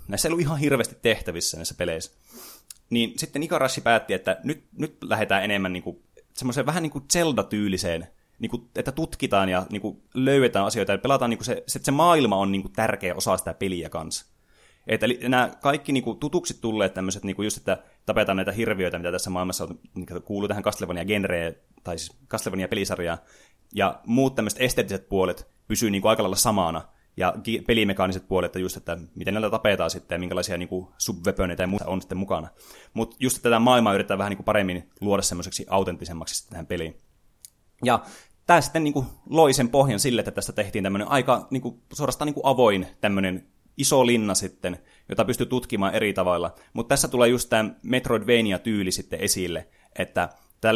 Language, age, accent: Finnish, 20-39, native